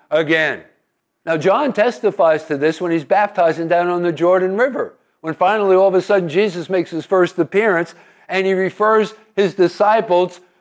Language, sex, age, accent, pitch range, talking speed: English, male, 50-69, American, 160-200 Hz, 170 wpm